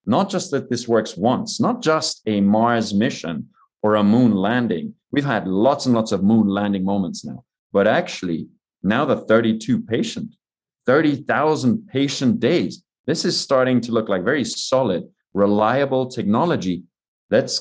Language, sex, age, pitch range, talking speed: English, male, 30-49, 105-140 Hz, 155 wpm